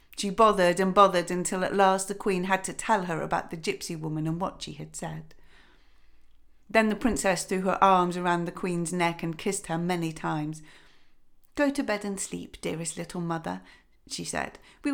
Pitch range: 165-210 Hz